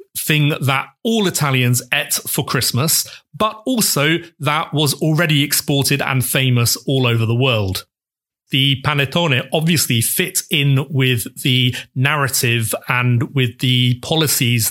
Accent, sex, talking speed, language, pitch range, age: British, male, 125 wpm, English, 125-150 Hz, 30-49